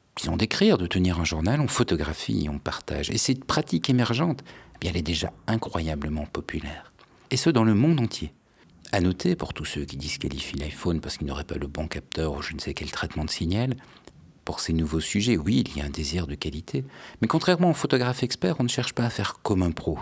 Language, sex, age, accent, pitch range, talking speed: French, male, 60-79, French, 75-115 Hz, 230 wpm